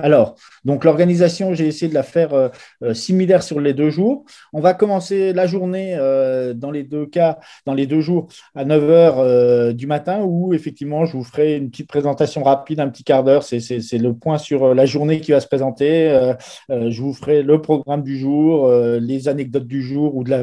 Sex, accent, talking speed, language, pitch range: male, French, 225 wpm, French, 130-160 Hz